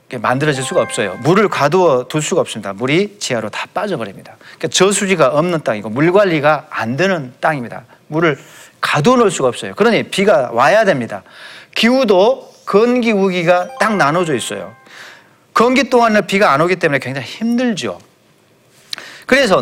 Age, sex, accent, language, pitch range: 40-59, male, native, Korean, 155-245 Hz